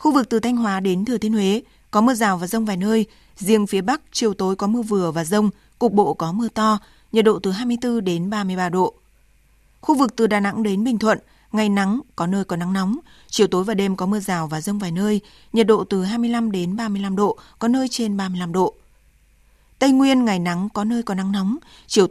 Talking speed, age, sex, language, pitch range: 235 wpm, 20-39, female, Vietnamese, 185-230 Hz